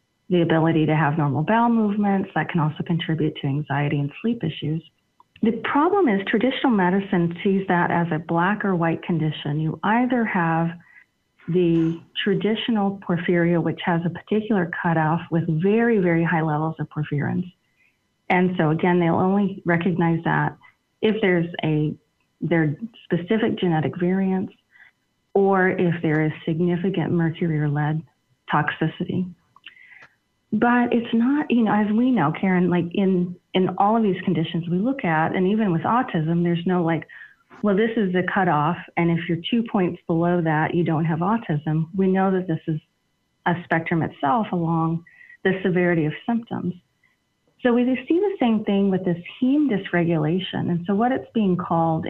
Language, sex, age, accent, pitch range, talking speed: English, female, 30-49, American, 165-200 Hz, 160 wpm